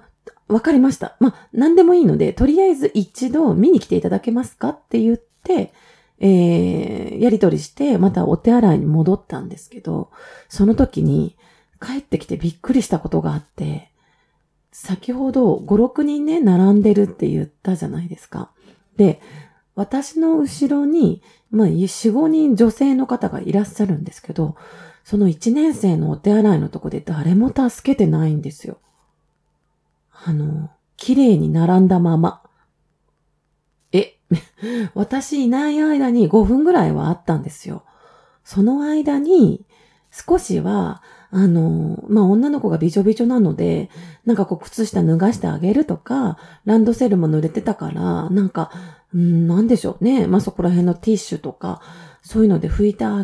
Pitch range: 175-250 Hz